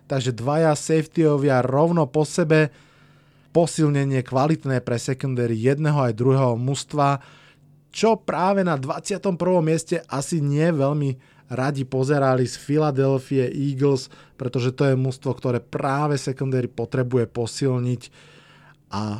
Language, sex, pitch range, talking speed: Slovak, male, 130-155 Hz, 115 wpm